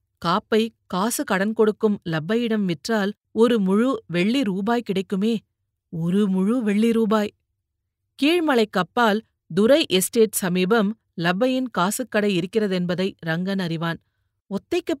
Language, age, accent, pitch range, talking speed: Tamil, 40-59, native, 175-230 Hz, 110 wpm